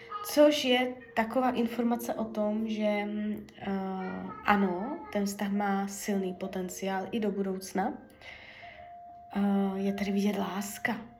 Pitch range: 185-225 Hz